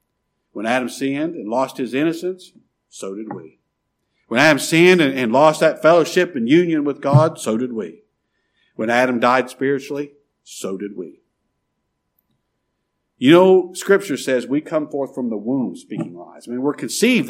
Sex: male